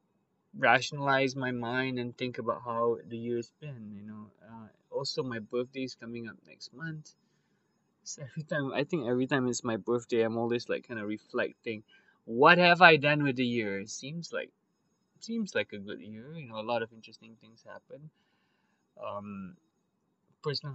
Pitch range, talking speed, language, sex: 115-180 Hz, 185 wpm, English, male